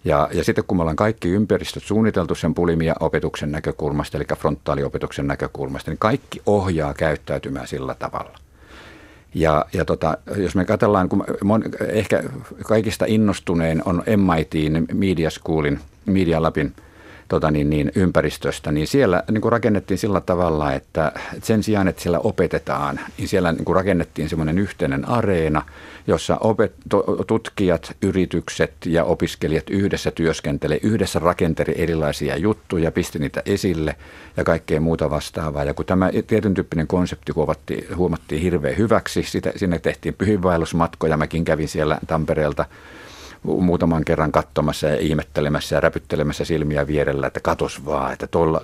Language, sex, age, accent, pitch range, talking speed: Finnish, male, 50-69, native, 75-95 Hz, 125 wpm